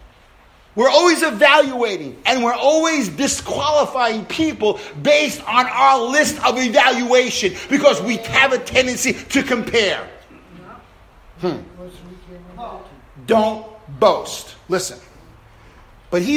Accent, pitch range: American, 195-270 Hz